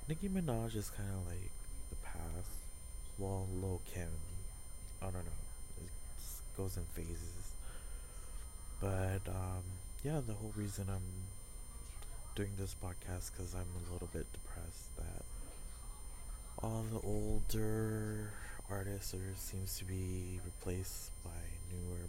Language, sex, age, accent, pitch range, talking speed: English, male, 20-39, American, 85-105 Hz, 120 wpm